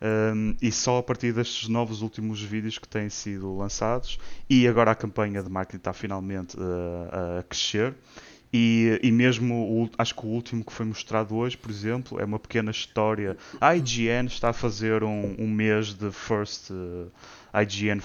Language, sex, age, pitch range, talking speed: Portuguese, male, 20-39, 105-115 Hz, 165 wpm